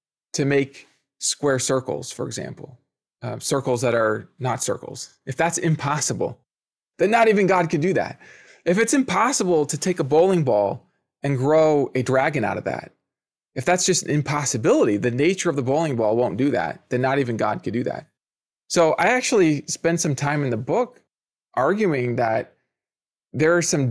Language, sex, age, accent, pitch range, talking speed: English, male, 20-39, American, 125-170 Hz, 180 wpm